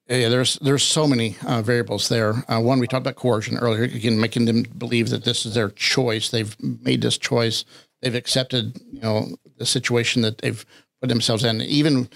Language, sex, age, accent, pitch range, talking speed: English, male, 50-69, American, 115-135 Hz, 195 wpm